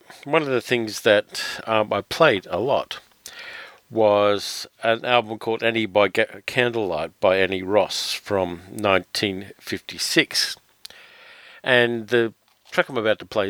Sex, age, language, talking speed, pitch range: male, 50-69, English, 130 wpm, 95-120 Hz